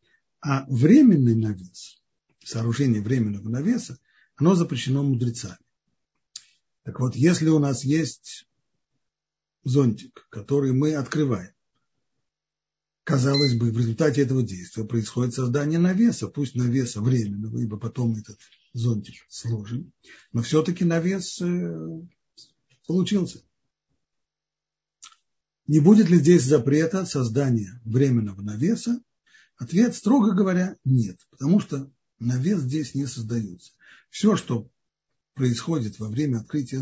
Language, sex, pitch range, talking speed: Russian, male, 120-165 Hz, 105 wpm